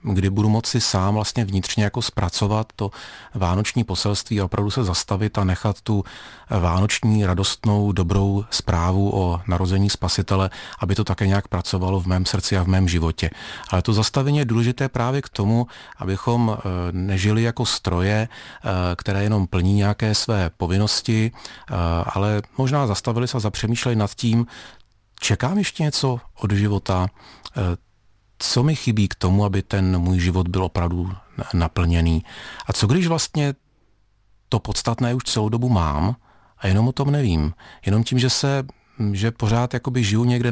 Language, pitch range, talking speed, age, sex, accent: Czech, 95-120 Hz, 155 wpm, 40-59, male, native